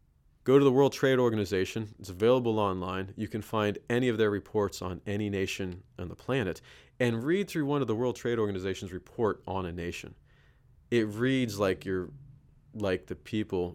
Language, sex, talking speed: English, male, 185 wpm